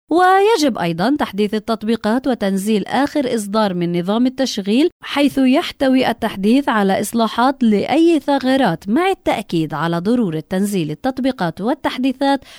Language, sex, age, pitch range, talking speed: Arabic, female, 20-39, 200-270 Hz, 115 wpm